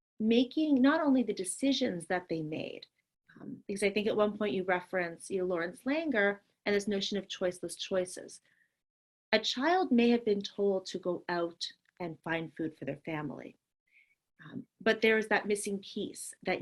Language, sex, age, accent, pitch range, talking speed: English, female, 30-49, American, 175-215 Hz, 175 wpm